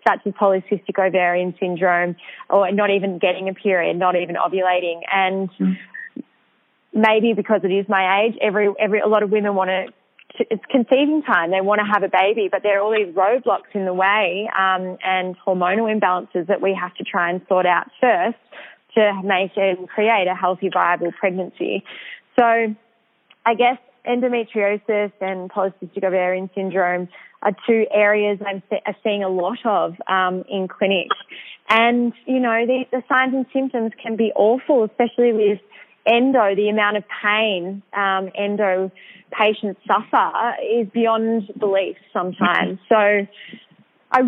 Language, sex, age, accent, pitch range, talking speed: English, female, 20-39, Australian, 190-220 Hz, 160 wpm